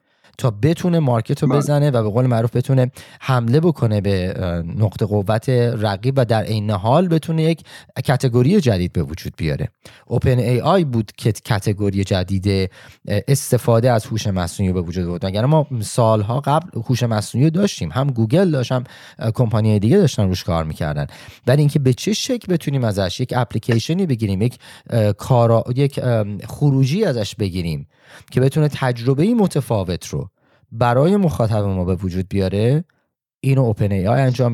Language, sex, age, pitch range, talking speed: Persian, male, 30-49, 105-135 Hz, 155 wpm